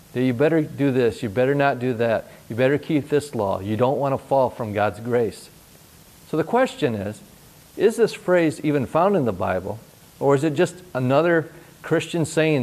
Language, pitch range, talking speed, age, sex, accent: English, 125-165 Hz, 195 wpm, 50-69, male, American